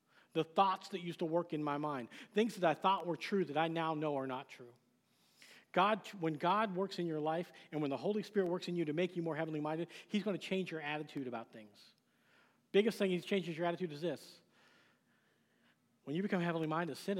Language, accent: English, American